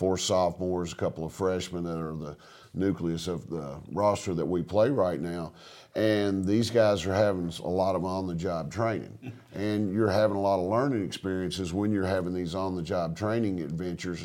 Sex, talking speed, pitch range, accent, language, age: male, 200 wpm, 85-100 Hz, American, English, 50-69